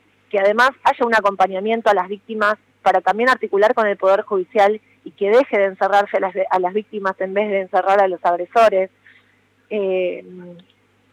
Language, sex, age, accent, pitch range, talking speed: Spanish, female, 20-39, Argentinian, 190-230 Hz, 165 wpm